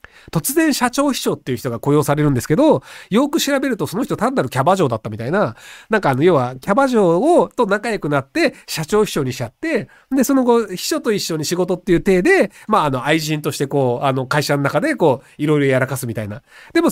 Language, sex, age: Japanese, male, 40-59